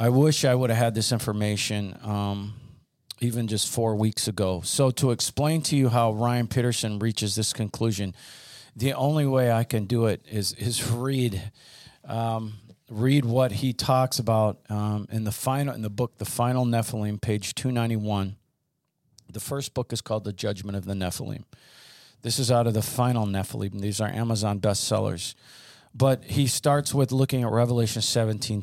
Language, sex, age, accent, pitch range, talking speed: English, male, 40-59, American, 105-130 Hz, 170 wpm